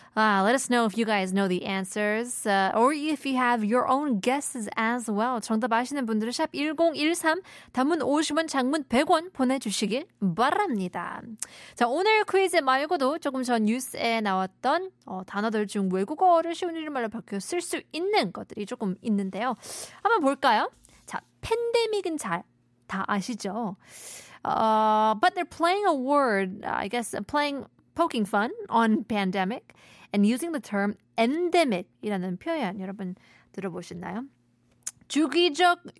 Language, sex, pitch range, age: Korean, female, 205-315 Hz, 20-39